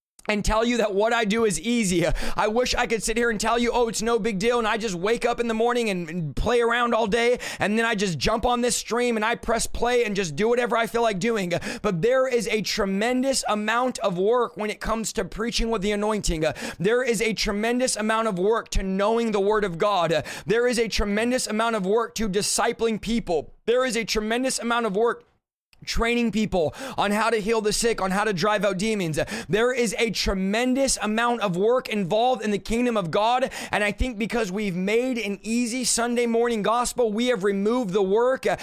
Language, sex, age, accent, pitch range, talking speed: English, male, 20-39, American, 210-240 Hz, 225 wpm